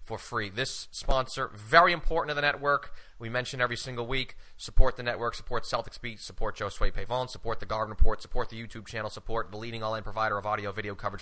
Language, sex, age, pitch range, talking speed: English, male, 30-49, 110-130 Hz, 215 wpm